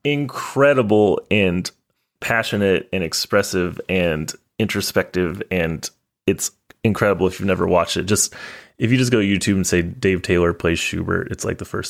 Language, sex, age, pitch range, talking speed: English, male, 20-39, 95-120 Hz, 160 wpm